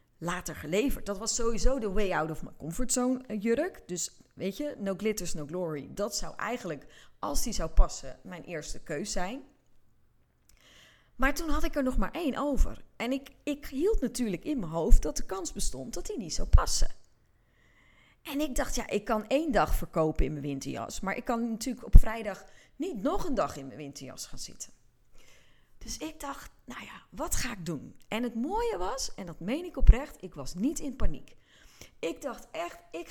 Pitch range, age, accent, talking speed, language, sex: 165-265 Hz, 30-49, Dutch, 200 wpm, Dutch, female